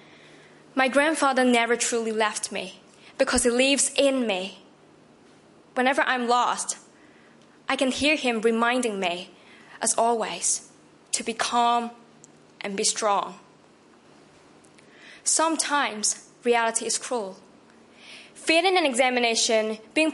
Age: 10-29